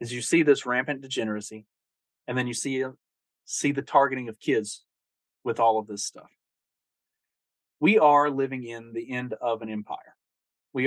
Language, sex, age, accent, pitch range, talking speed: English, male, 30-49, American, 105-125 Hz, 165 wpm